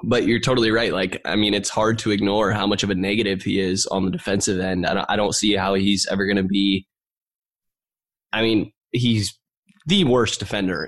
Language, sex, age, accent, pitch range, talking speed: English, male, 10-29, American, 95-125 Hz, 210 wpm